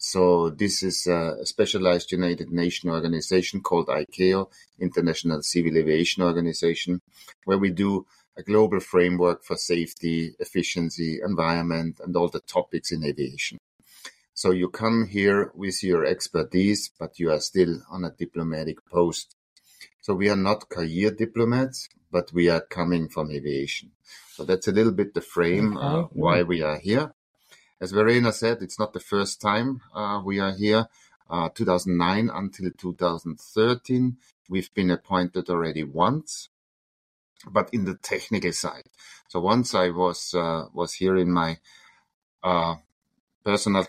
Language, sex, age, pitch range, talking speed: English, male, 50-69, 85-100 Hz, 145 wpm